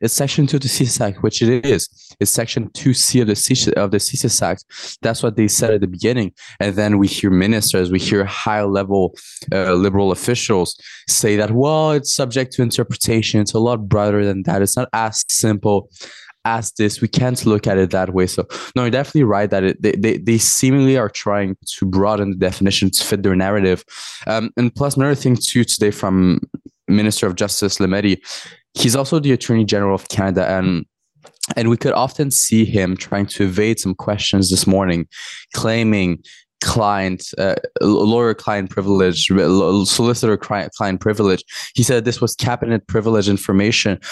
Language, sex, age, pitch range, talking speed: English, male, 20-39, 95-120 Hz, 185 wpm